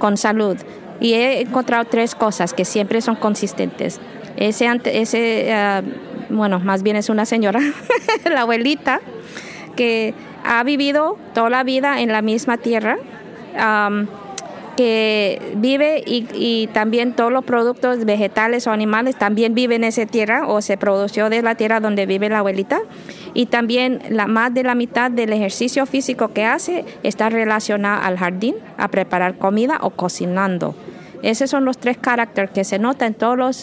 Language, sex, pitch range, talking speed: English, female, 215-255 Hz, 160 wpm